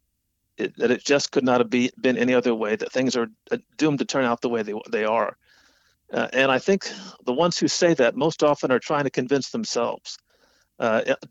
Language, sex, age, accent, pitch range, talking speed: English, male, 50-69, American, 125-155 Hz, 220 wpm